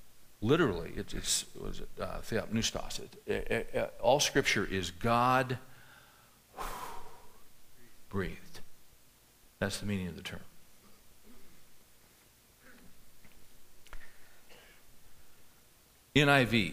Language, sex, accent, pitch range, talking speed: English, male, American, 100-130 Hz, 90 wpm